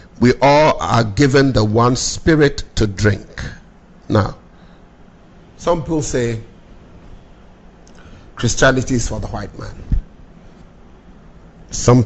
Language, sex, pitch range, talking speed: English, male, 105-135 Hz, 100 wpm